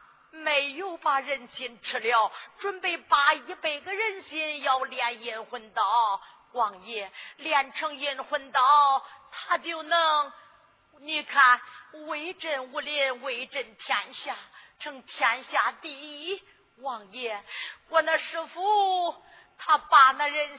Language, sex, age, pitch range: Chinese, female, 40-59, 255-335 Hz